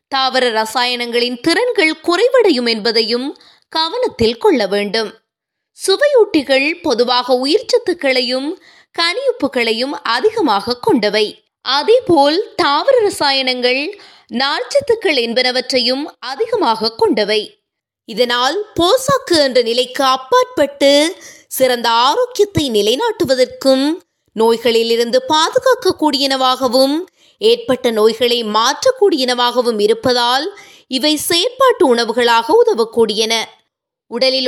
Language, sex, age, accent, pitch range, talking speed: Tamil, female, 20-39, native, 245-385 Hz, 75 wpm